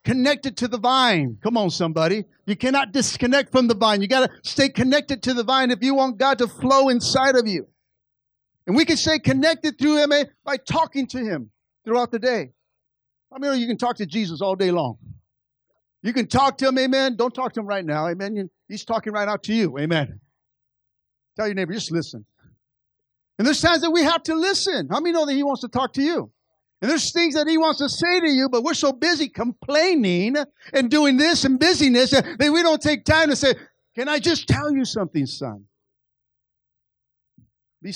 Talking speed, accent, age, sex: 210 wpm, American, 50-69, male